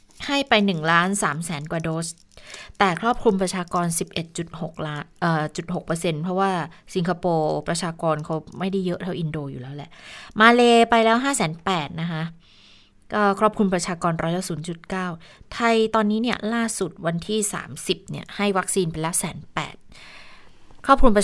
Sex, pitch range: female, 170-210 Hz